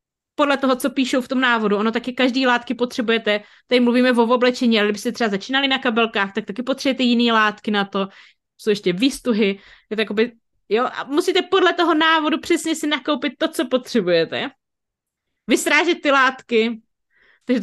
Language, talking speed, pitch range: Czech, 175 wpm, 220-290 Hz